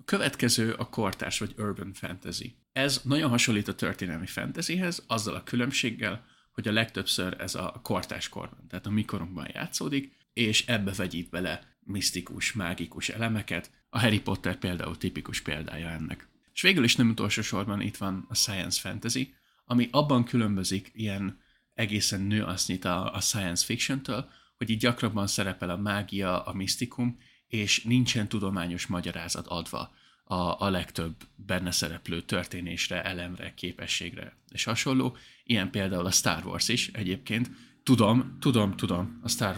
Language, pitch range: Hungarian, 90-120 Hz